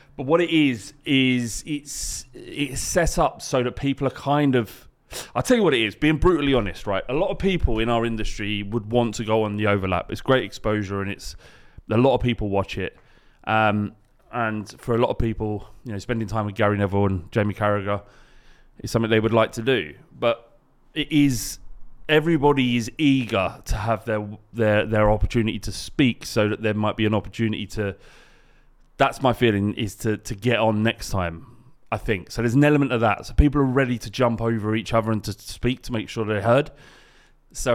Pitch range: 105-135 Hz